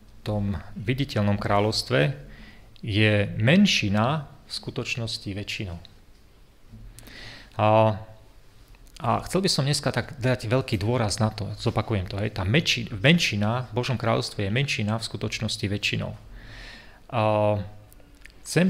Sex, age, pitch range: male, 30-49, 105-120 Hz